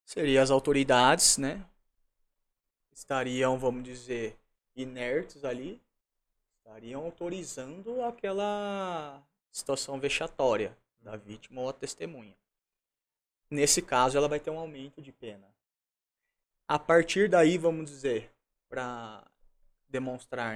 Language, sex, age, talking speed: Portuguese, male, 20-39, 100 wpm